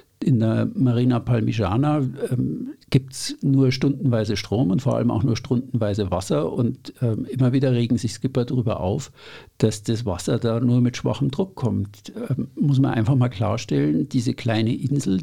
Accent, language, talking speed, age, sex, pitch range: German, German, 175 wpm, 50-69, male, 115-140 Hz